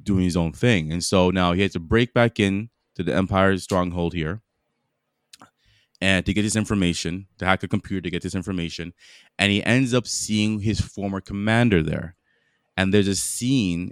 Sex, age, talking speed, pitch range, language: male, 20-39, 190 wpm, 90-110 Hz, English